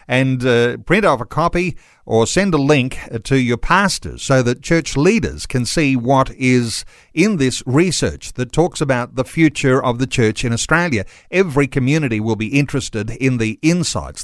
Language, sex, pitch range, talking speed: English, male, 115-145 Hz, 175 wpm